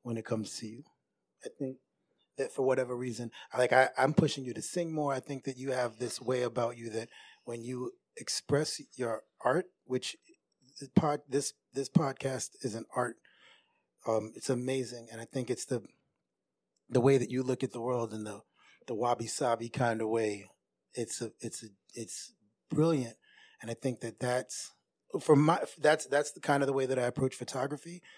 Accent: American